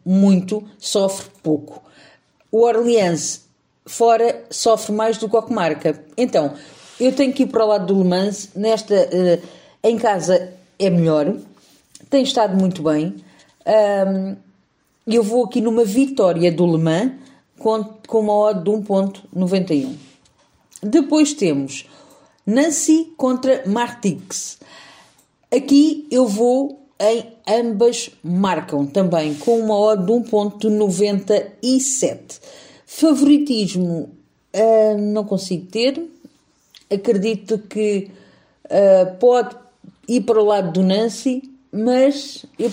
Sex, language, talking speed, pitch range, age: female, Portuguese, 115 wpm, 190-245 Hz, 40-59